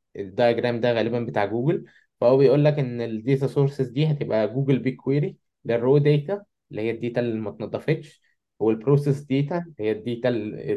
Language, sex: Arabic, male